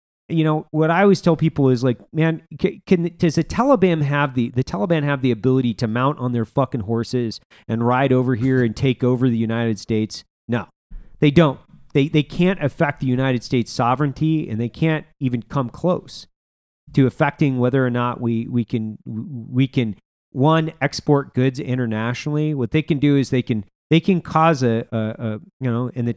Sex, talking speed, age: male, 195 wpm, 40-59